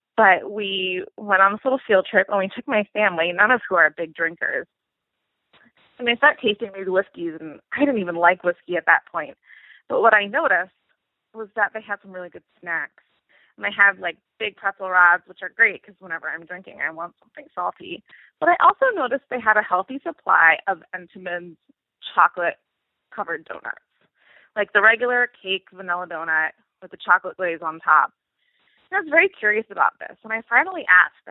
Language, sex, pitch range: English, female, 185-245 Hz